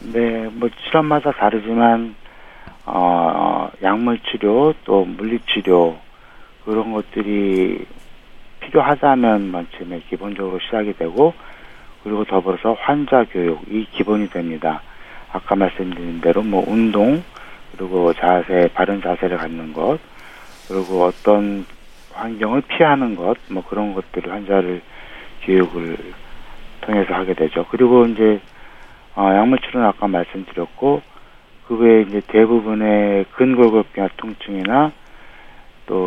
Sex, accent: male, native